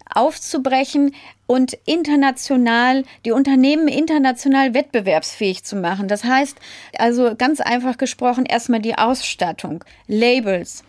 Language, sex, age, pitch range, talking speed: German, female, 30-49, 220-265 Hz, 105 wpm